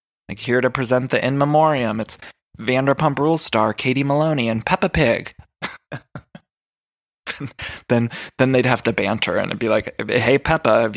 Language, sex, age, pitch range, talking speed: English, male, 20-39, 110-130 Hz, 160 wpm